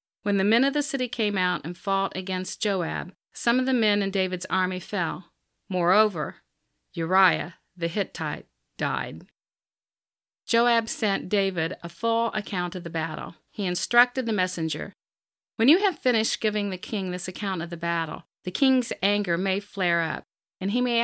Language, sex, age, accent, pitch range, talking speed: English, female, 40-59, American, 185-225 Hz, 170 wpm